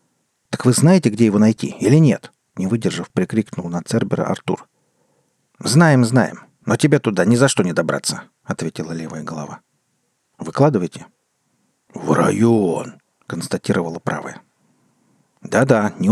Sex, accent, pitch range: male, native, 95-135 Hz